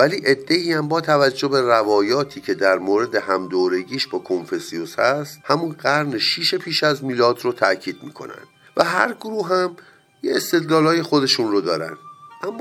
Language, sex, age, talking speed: Persian, male, 50-69, 155 wpm